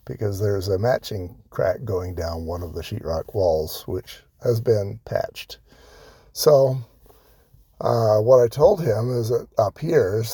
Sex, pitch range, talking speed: male, 90-120 Hz, 145 wpm